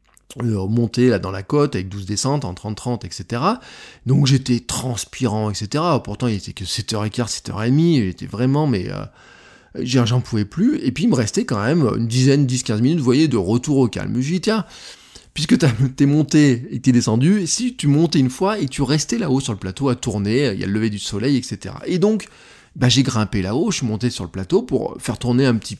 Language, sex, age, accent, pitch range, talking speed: French, male, 20-39, French, 105-145 Hz, 220 wpm